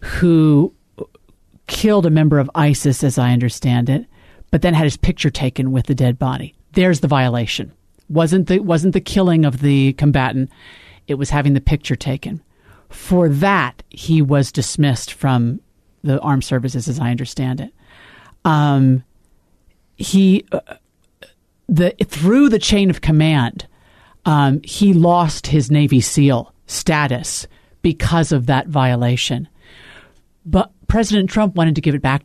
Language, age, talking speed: English, 50-69, 145 wpm